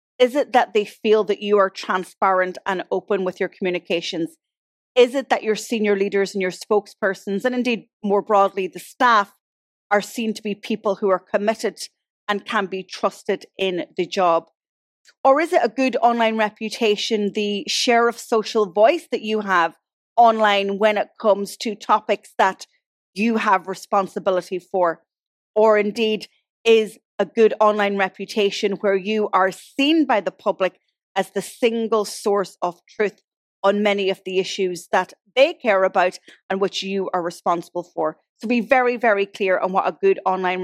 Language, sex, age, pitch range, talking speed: English, female, 30-49, 190-225 Hz, 170 wpm